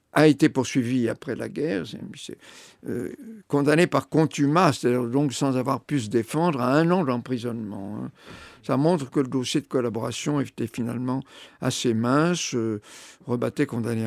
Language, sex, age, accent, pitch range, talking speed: French, male, 50-69, French, 115-140 Hz, 160 wpm